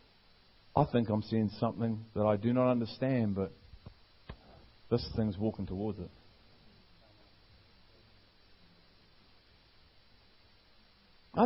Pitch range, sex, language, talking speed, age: 100-120 Hz, male, English, 90 wpm, 40-59